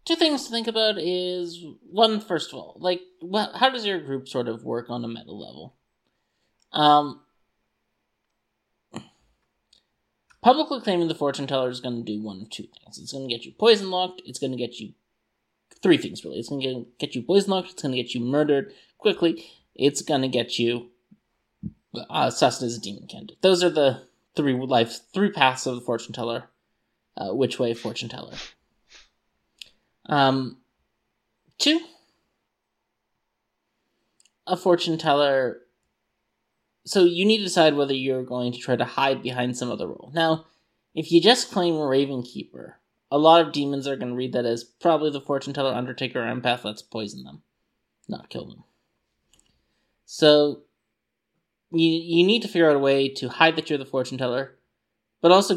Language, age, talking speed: English, 20-39, 175 wpm